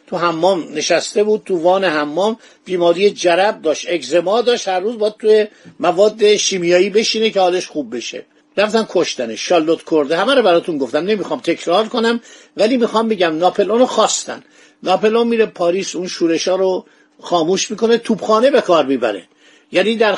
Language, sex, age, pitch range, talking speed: Persian, male, 50-69, 170-220 Hz, 165 wpm